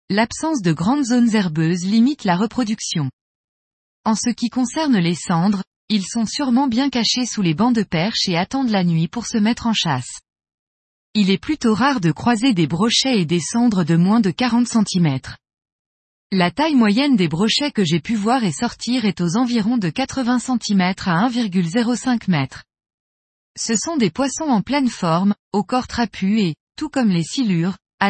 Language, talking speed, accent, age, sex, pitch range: French, 180 wpm, French, 20-39, female, 175-245 Hz